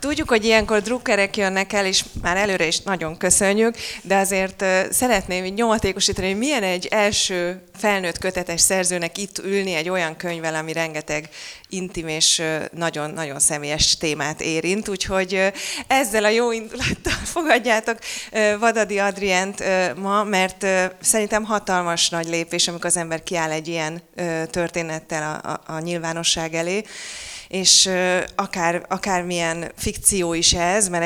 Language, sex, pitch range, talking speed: Hungarian, female, 165-195 Hz, 135 wpm